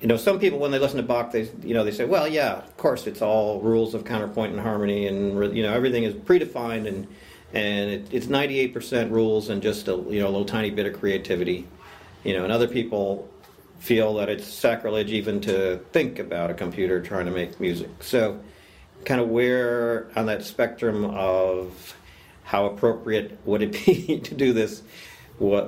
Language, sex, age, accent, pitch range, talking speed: English, male, 50-69, American, 95-115 Hz, 195 wpm